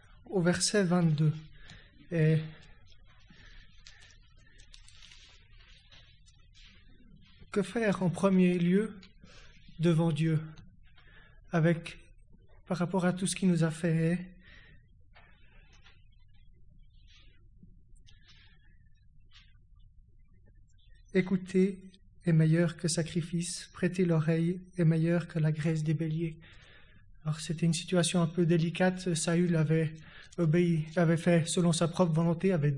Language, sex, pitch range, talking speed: French, male, 105-175 Hz, 95 wpm